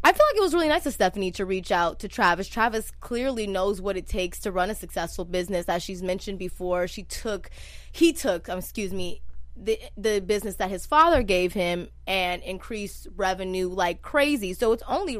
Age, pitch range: 20-39, 180-255 Hz